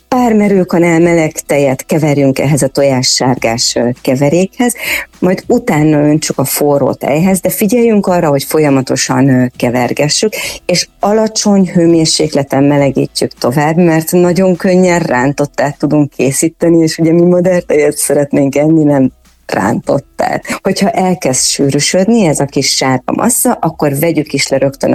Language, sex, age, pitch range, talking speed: Hungarian, female, 30-49, 140-185 Hz, 125 wpm